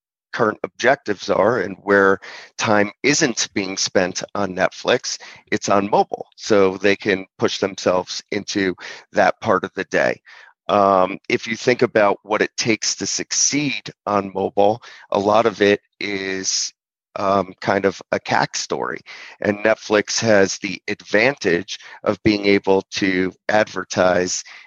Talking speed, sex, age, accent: 140 wpm, male, 30-49, American